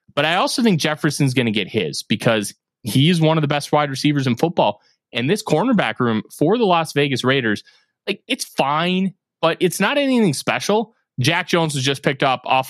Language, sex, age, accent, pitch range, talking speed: English, male, 20-39, American, 120-170 Hz, 210 wpm